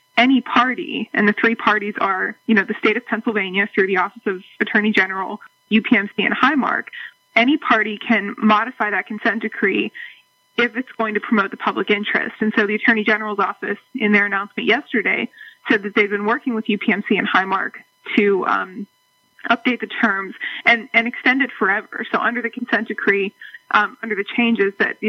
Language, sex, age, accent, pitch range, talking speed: English, female, 20-39, American, 205-235 Hz, 185 wpm